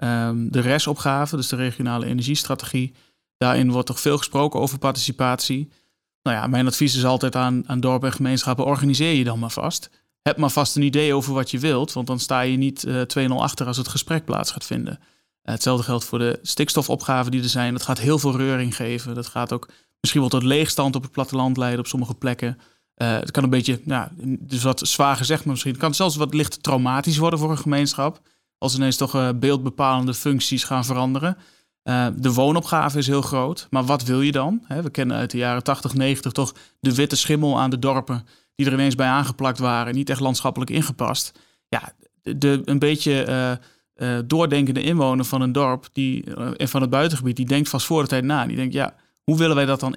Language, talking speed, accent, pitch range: Dutch, 210 wpm, Dutch, 125-145 Hz